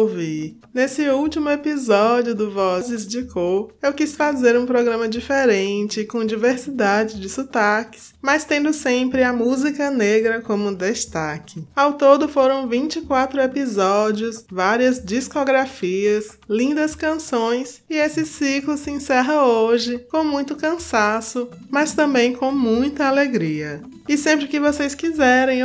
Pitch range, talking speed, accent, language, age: 210-275 Hz, 125 wpm, Brazilian, Portuguese, 20-39